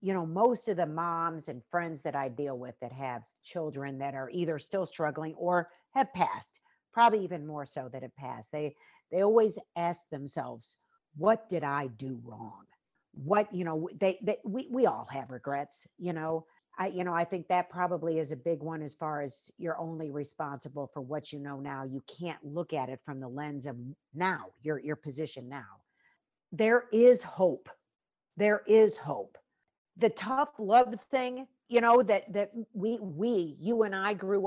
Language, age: English, 50-69